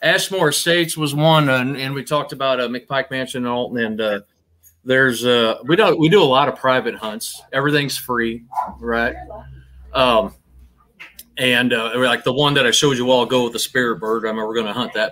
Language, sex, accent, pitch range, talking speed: English, male, American, 110-135 Hz, 215 wpm